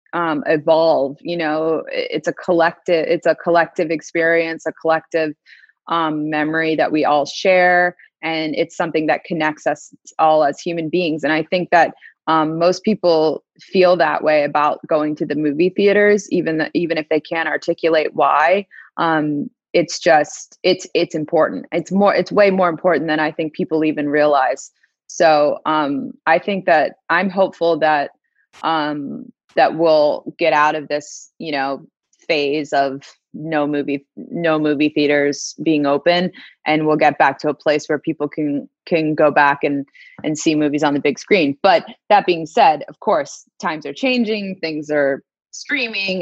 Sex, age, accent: female, 20-39, American